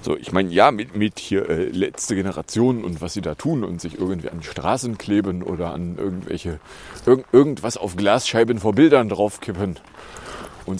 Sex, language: male, German